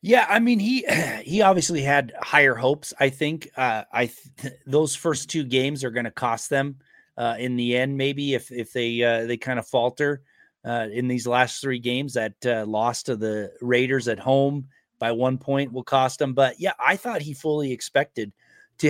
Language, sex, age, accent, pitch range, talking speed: English, male, 30-49, American, 130-155 Hz, 205 wpm